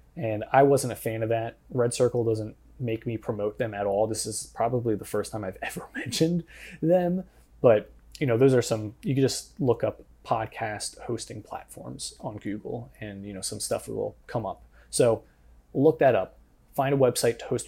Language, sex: English, male